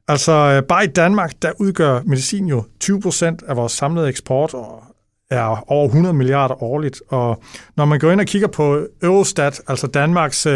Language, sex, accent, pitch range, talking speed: English, male, Danish, 130-165 Hz, 175 wpm